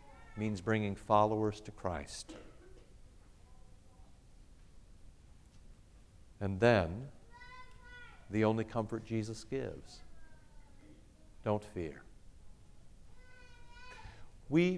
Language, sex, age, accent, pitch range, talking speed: English, male, 60-79, American, 95-130 Hz, 60 wpm